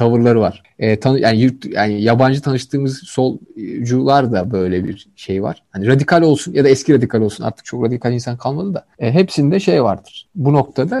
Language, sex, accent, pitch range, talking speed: Turkish, male, native, 110-140 Hz, 190 wpm